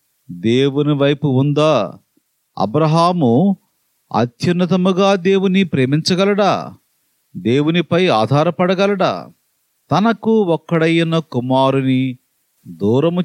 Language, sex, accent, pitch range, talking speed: Telugu, male, native, 135-190 Hz, 60 wpm